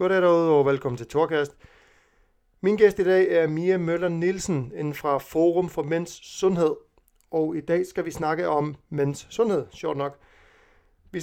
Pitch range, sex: 145-170 Hz, male